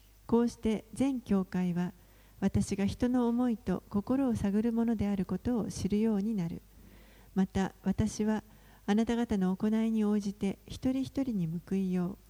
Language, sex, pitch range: Japanese, female, 180-230 Hz